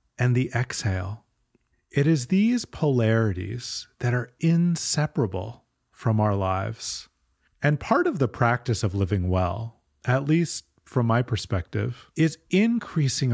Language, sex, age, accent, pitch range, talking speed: English, male, 30-49, American, 105-140 Hz, 125 wpm